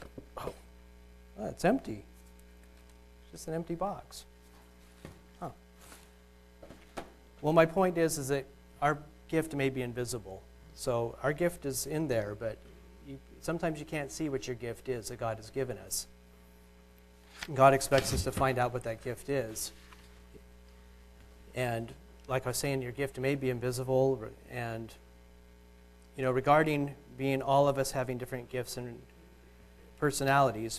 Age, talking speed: 40-59, 140 wpm